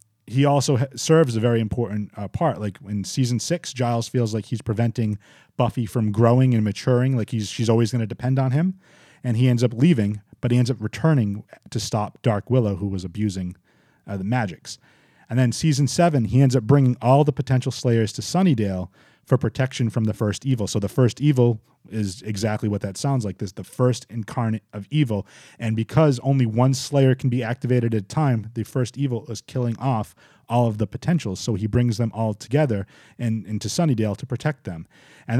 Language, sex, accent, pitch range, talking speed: English, male, American, 110-135 Hz, 205 wpm